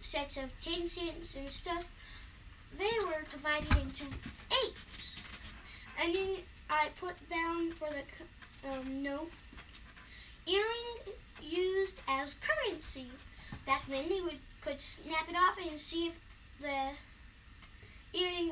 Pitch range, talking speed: 290-370 Hz, 120 wpm